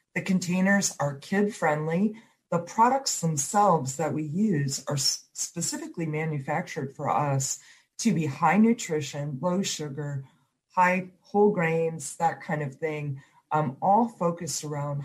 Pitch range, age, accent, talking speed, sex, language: 140-170 Hz, 40-59, American, 130 wpm, female, English